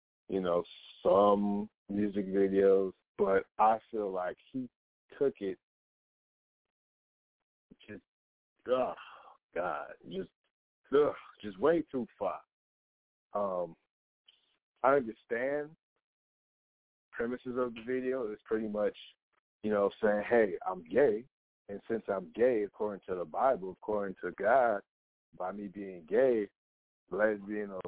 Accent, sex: American, male